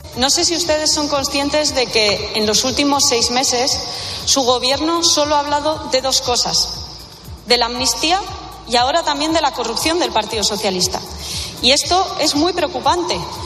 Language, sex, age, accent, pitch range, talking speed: Spanish, female, 30-49, Spanish, 180-260 Hz, 170 wpm